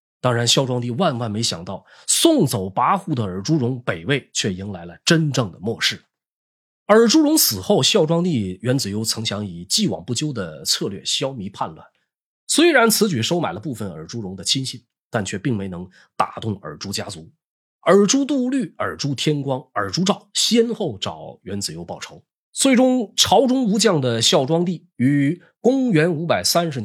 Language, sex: Chinese, male